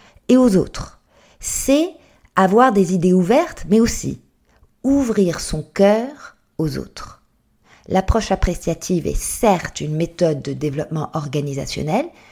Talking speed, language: 115 wpm, French